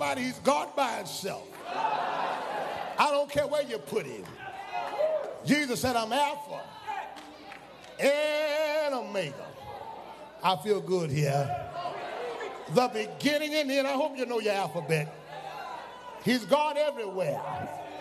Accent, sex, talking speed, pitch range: American, male, 115 wpm, 215-295 Hz